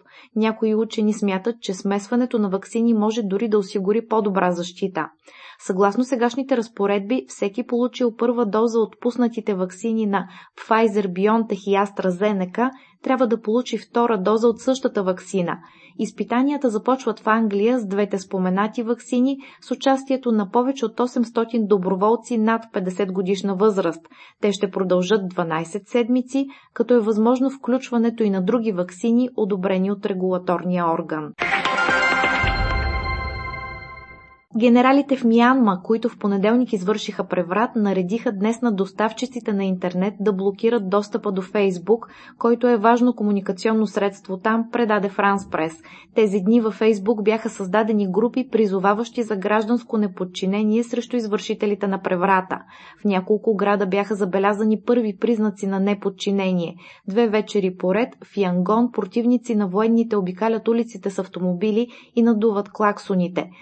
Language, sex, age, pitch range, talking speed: Bulgarian, female, 20-39, 195-235 Hz, 130 wpm